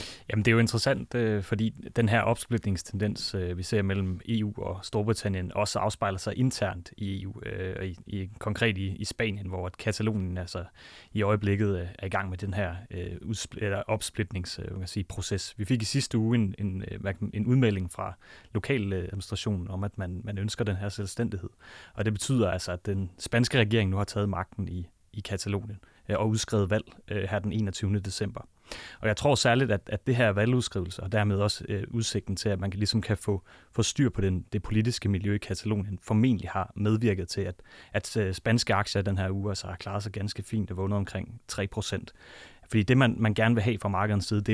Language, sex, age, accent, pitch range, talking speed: Danish, male, 30-49, native, 95-110 Hz, 185 wpm